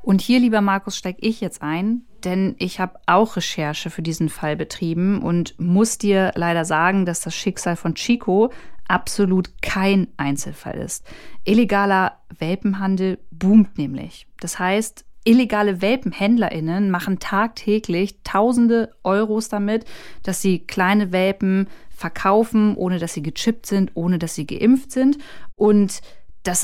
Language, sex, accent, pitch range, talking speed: German, female, German, 180-220 Hz, 135 wpm